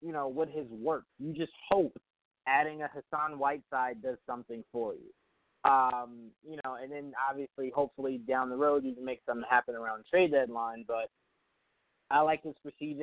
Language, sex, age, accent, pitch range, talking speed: English, male, 20-39, American, 130-160 Hz, 190 wpm